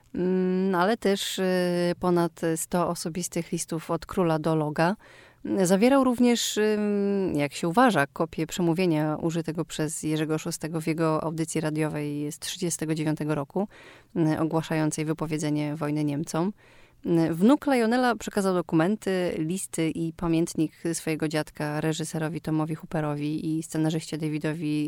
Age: 30-49